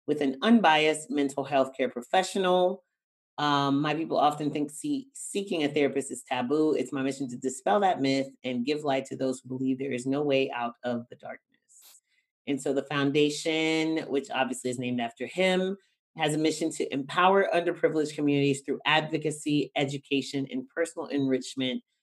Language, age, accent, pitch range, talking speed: English, 30-49, American, 135-160 Hz, 170 wpm